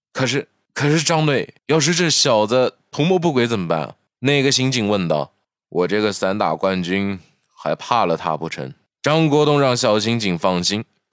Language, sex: Chinese, male